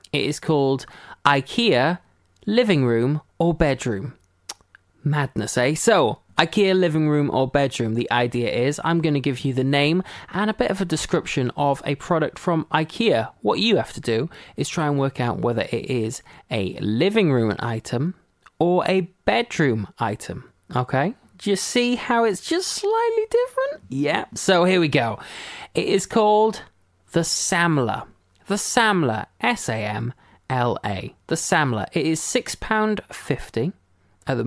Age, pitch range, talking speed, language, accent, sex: 20-39, 125-180 Hz, 160 wpm, English, British, male